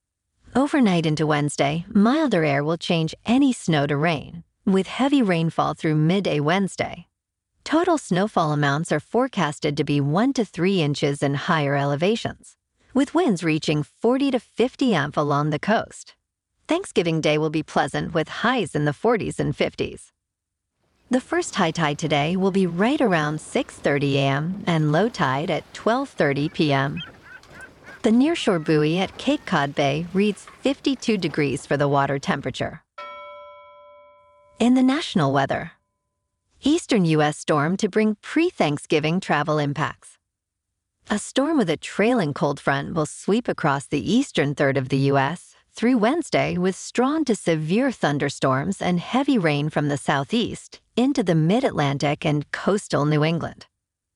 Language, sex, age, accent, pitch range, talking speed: English, female, 40-59, American, 145-225 Hz, 145 wpm